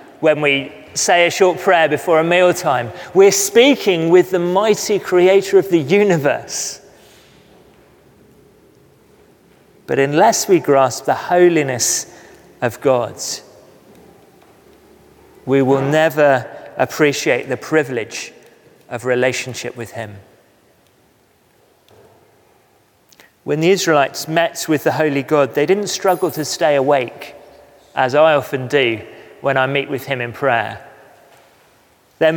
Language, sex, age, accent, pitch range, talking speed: English, male, 30-49, British, 135-185 Hz, 115 wpm